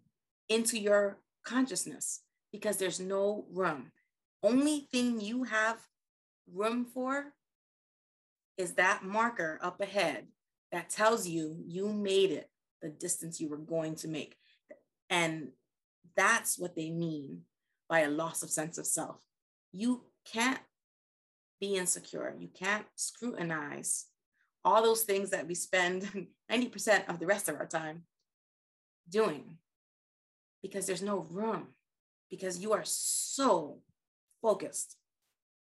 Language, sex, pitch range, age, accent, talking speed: English, female, 165-210 Hz, 30-49, American, 125 wpm